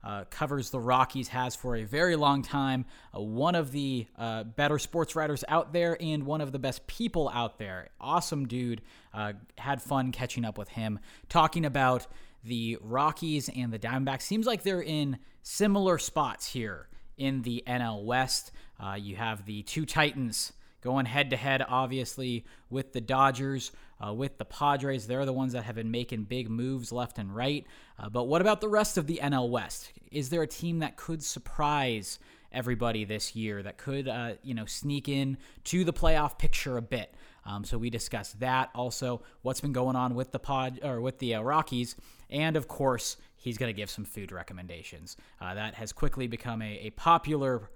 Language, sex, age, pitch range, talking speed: English, male, 20-39, 115-145 Hz, 190 wpm